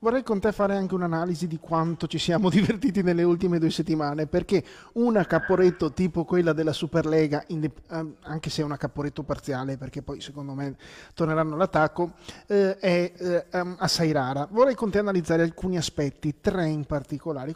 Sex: male